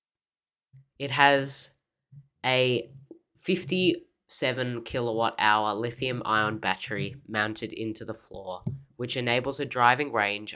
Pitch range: 110-140 Hz